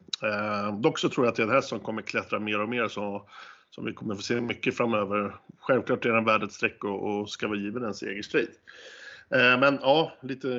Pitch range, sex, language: 105-120 Hz, male, Swedish